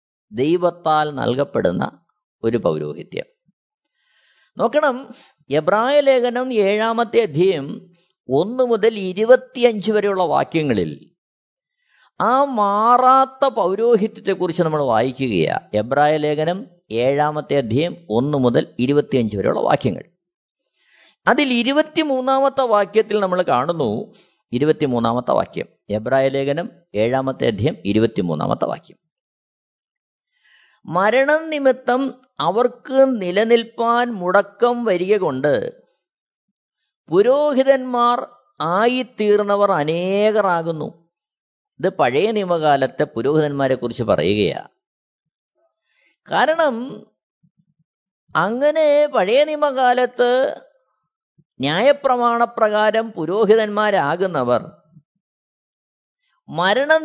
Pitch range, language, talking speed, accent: 165-260 Hz, Malayalam, 65 wpm, native